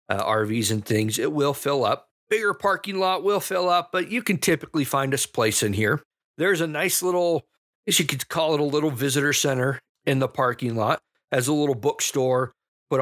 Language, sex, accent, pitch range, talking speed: English, male, American, 115-150 Hz, 215 wpm